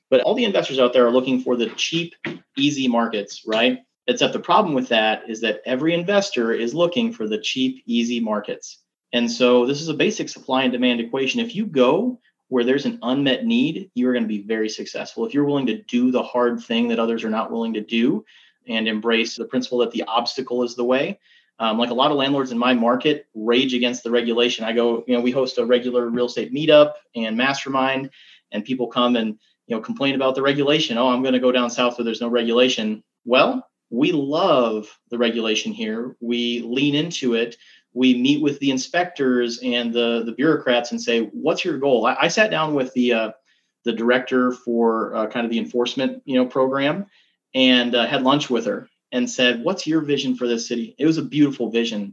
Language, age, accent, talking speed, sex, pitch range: English, 30-49, American, 215 wpm, male, 115-140 Hz